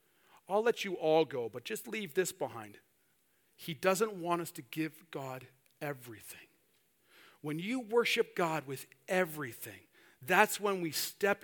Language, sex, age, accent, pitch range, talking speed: English, male, 40-59, American, 150-195 Hz, 145 wpm